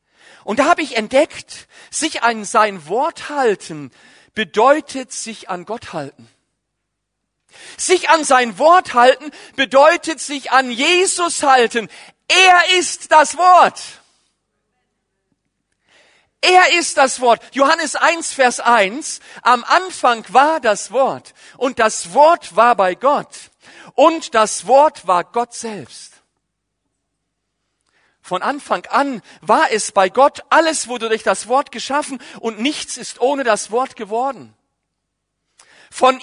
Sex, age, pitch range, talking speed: male, 40-59, 225-305 Hz, 125 wpm